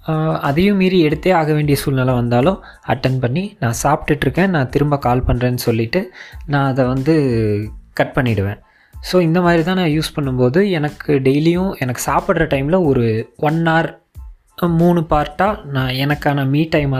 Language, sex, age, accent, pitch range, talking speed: Tamil, male, 20-39, native, 125-160 Hz, 150 wpm